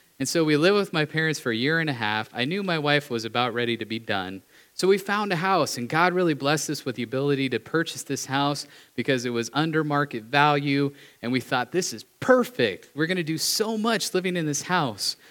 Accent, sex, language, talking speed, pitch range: American, male, English, 245 wpm, 120-155 Hz